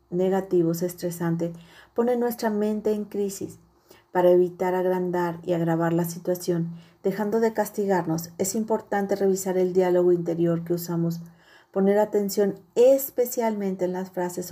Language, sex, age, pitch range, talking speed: Spanish, female, 40-59, 170-195 Hz, 130 wpm